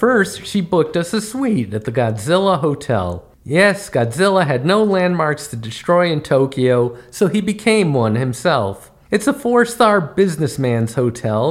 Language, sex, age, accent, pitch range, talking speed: English, male, 50-69, American, 115-180 Hz, 150 wpm